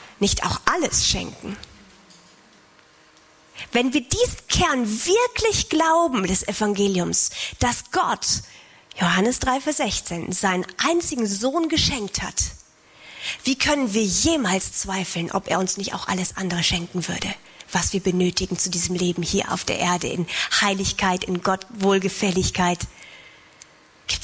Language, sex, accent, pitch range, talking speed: German, female, German, 185-255 Hz, 130 wpm